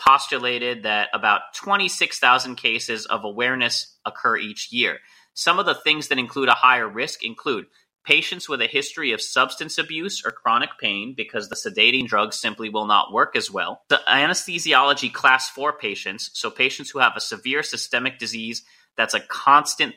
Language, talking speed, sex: English, 170 wpm, male